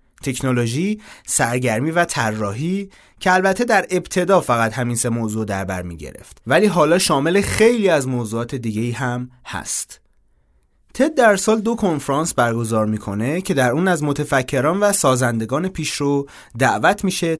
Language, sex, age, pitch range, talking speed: Persian, male, 30-49, 120-175 Hz, 140 wpm